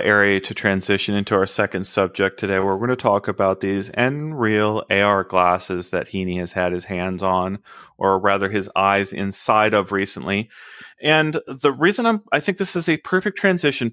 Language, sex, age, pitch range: English, male, 30-49, 100-125 Hz